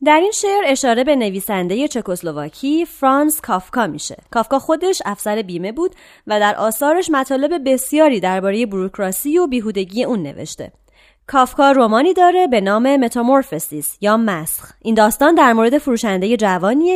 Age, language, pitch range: 30-49, Persian, 205-295 Hz